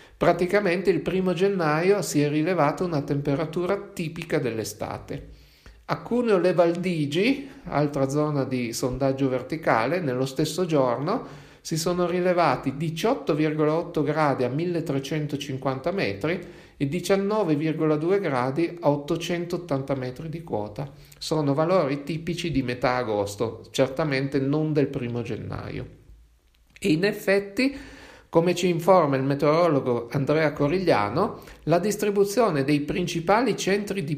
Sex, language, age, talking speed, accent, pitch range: male, Italian, 40-59, 115 wpm, native, 135-175 Hz